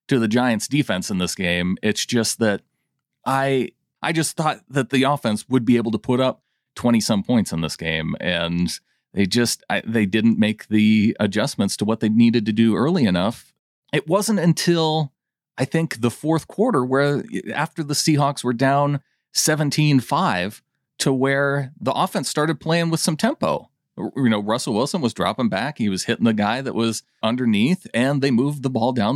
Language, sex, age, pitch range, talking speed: English, male, 30-49, 105-145 Hz, 185 wpm